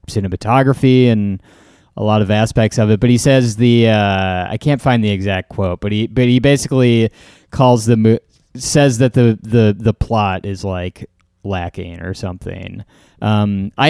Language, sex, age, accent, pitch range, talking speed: English, male, 20-39, American, 105-135 Hz, 175 wpm